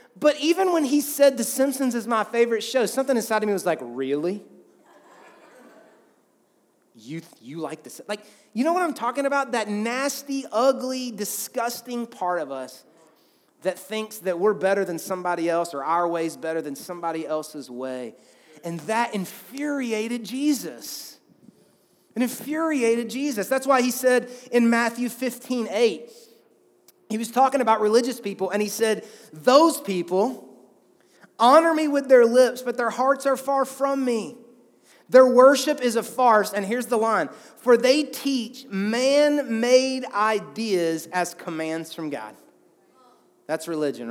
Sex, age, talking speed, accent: male, 30-49, 150 wpm, American